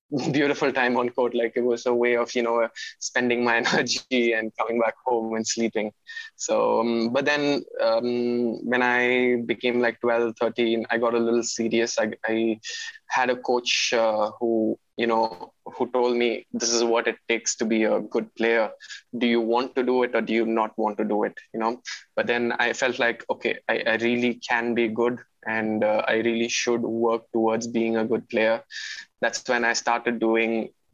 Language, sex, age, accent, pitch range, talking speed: English, male, 20-39, Indian, 115-120 Hz, 200 wpm